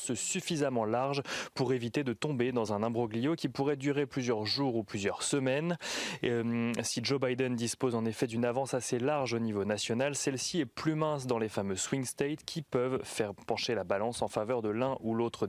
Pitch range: 115-140 Hz